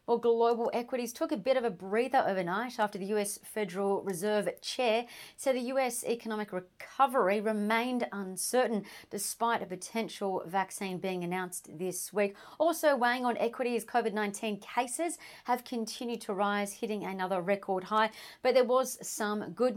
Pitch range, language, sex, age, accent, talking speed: 200-235 Hz, English, female, 40-59, Australian, 150 wpm